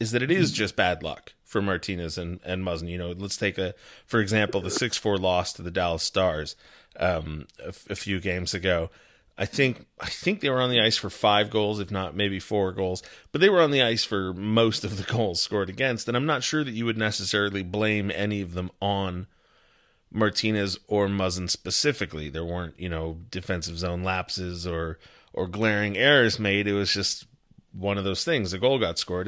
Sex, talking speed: male, 210 wpm